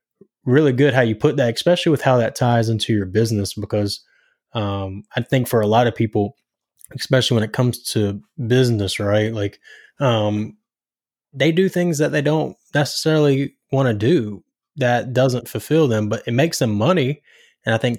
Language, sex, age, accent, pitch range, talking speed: English, male, 20-39, American, 105-130 Hz, 180 wpm